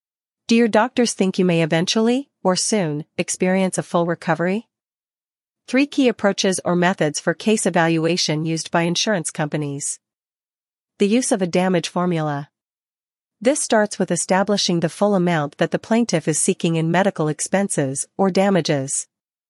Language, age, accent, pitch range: English, 40-59, American, 165-205 Hz